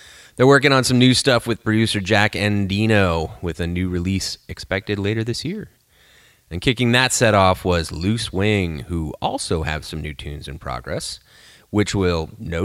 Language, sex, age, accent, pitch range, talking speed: English, male, 30-49, American, 85-125 Hz, 175 wpm